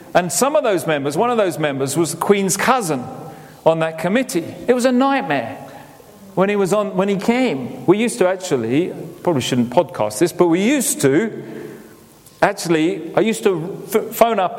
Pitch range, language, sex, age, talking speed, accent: 175-230 Hz, English, male, 40-59, 185 wpm, British